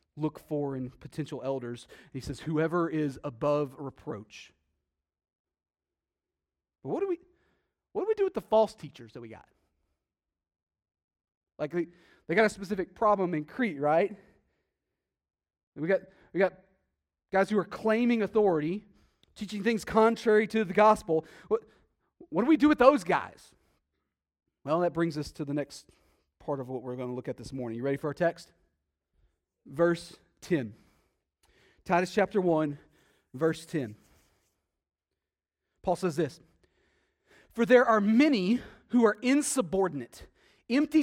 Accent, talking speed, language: American, 145 wpm, English